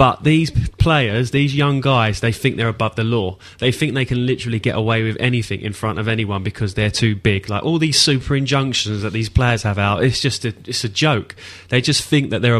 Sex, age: male, 20-39